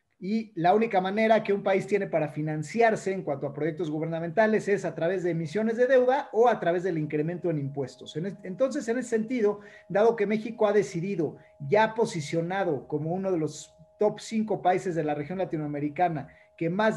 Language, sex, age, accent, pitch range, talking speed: Spanish, male, 40-59, Mexican, 165-215 Hz, 185 wpm